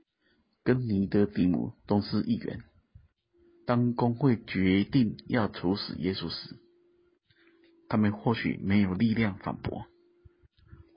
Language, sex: Chinese, male